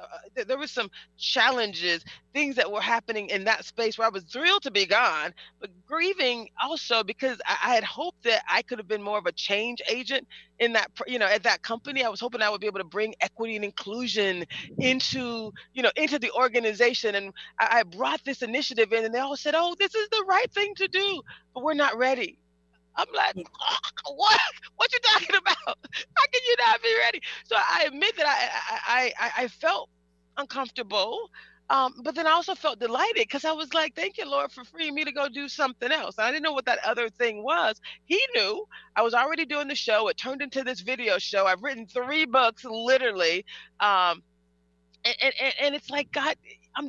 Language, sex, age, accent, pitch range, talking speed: English, female, 30-49, American, 220-310 Hz, 215 wpm